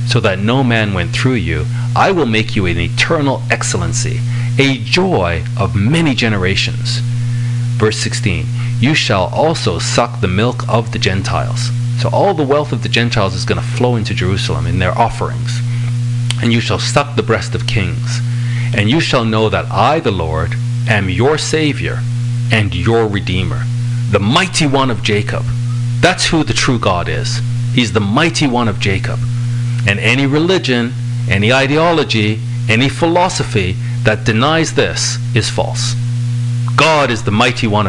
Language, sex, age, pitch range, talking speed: English, male, 40-59, 115-120 Hz, 160 wpm